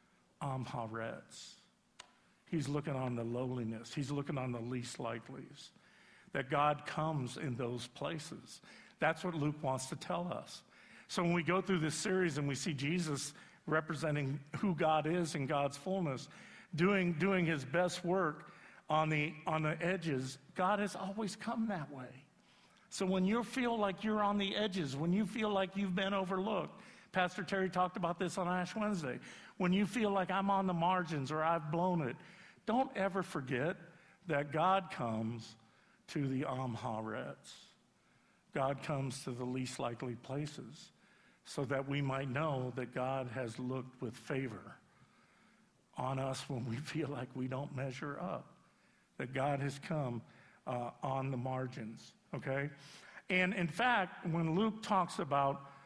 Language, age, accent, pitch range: English, 50-69, American, 135-185 Hz